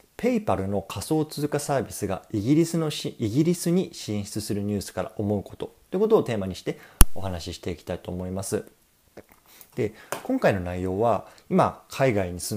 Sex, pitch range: male, 95-145 Hz